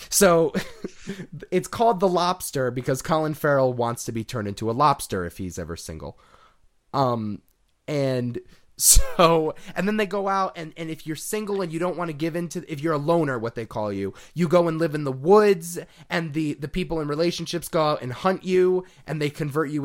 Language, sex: English, male